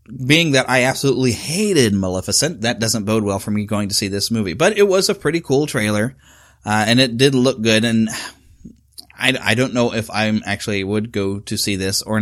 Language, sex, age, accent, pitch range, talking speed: English, male, 30-49, American, 105-130 Hz, 215 wpm